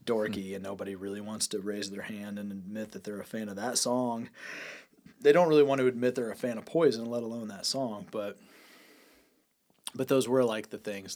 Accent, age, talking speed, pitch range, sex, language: American, 30-49, 215 wpm, 95-115 Hz, male, English